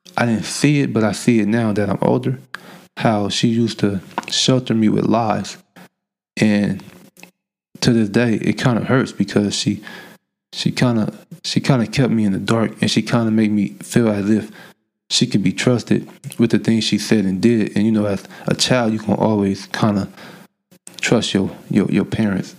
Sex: male